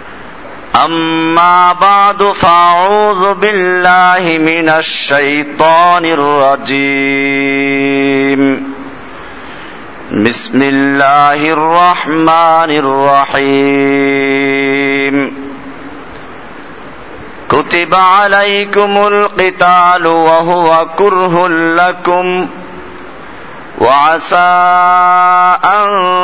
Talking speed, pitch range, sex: 45 wpm, 140-175 Hz, male